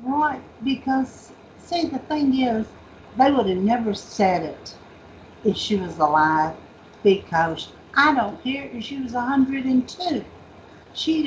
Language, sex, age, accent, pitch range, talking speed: English, female, 60-79, American, 200-260 Hz, 135 wpm